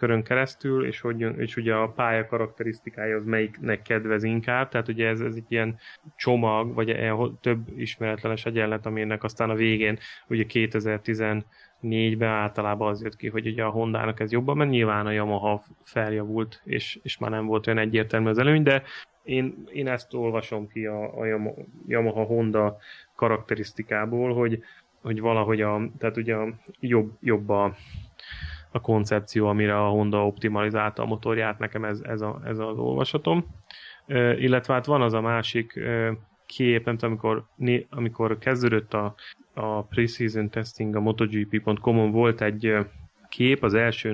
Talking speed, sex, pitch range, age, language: 150 wpm, male, 105-115 Hz, 20-39, Hungarian